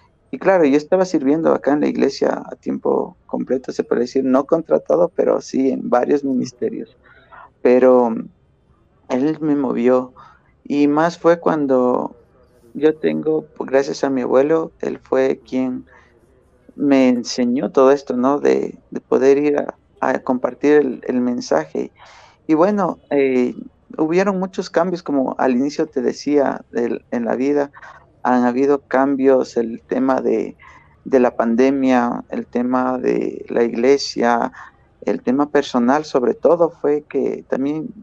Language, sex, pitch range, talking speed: Spanish, male, 130-165 Hz, 140 wpm